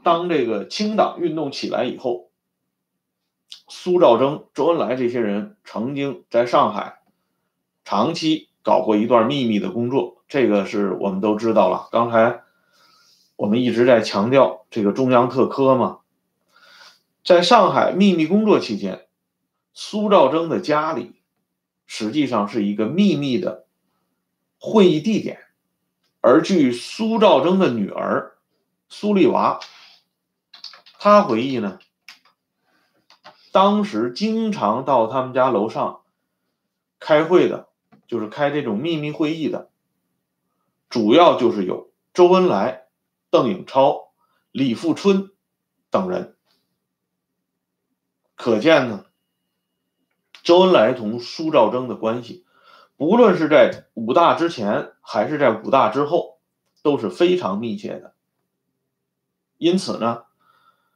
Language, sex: Swedish, male